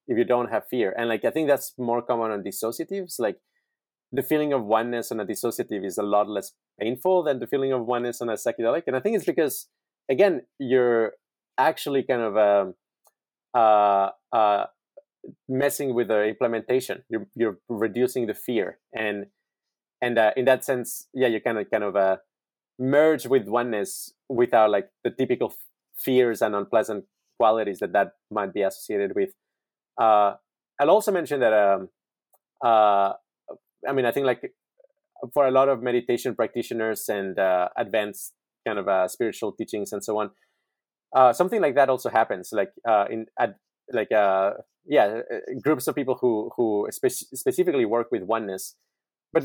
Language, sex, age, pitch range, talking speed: German, male, 30-49, 110-140 Hz, 170 wpm